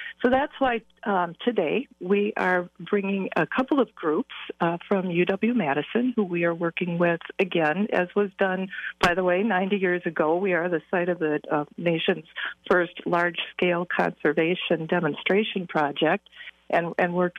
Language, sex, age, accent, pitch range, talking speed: English, female, 50-69, American, 180-220 Hz, 160 wpm